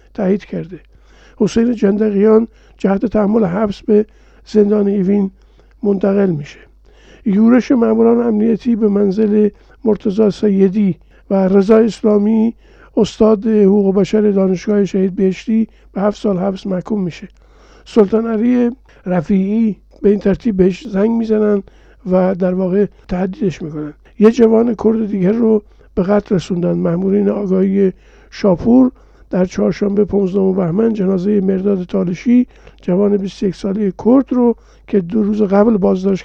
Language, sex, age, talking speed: Persian, male, 50-69, 125 wpm